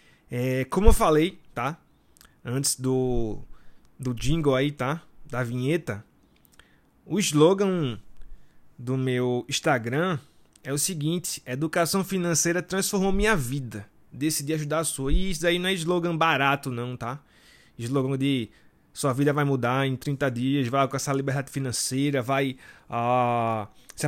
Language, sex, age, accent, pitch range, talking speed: Portuguese, male, 20-39, Brazilian, 130-165 Hz, 140 wpm